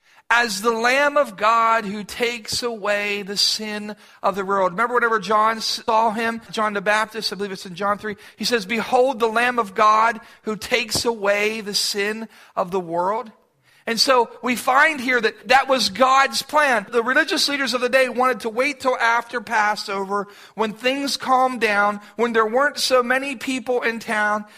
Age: 40-59